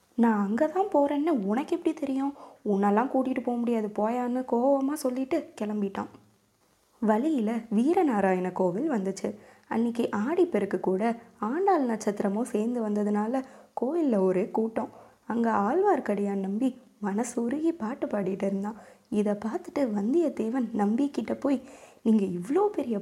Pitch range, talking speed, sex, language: 205-270 Hz, 115 wpm, female, Tamil